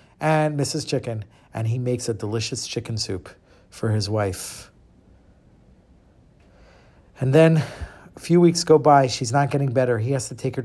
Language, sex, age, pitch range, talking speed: English, male, 50-69, 115-165 Hz, 165 wpm